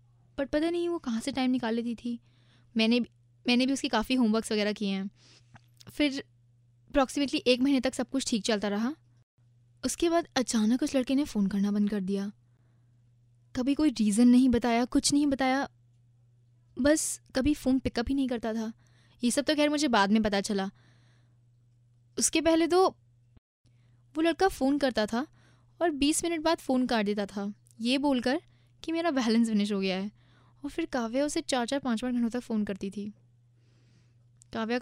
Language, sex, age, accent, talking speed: Hindi, female, 10-29, native, 180 wpm